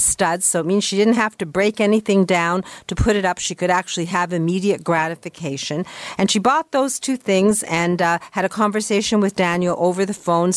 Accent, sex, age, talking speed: American, female, 50-69, 210 wpm